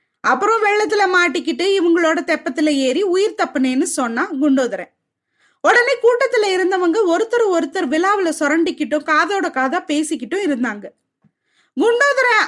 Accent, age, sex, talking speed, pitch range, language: native, 20-39, female, 105 wpm, 285-390 Hz, Tamil